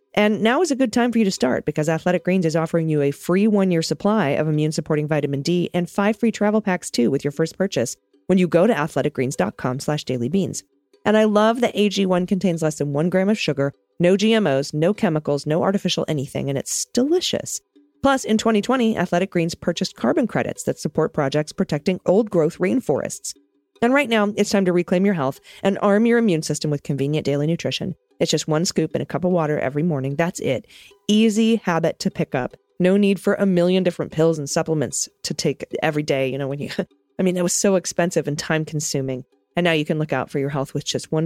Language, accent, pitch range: English, American, 150-200 Hz